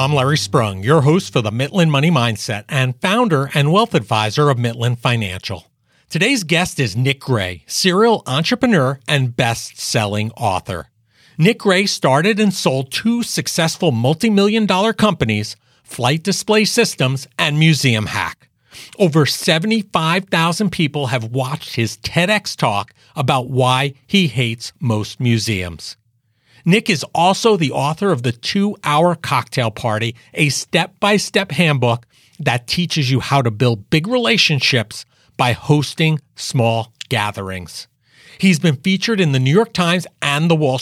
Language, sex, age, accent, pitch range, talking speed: English, male, 40-59, American, 120-175 Hz, 140 wpm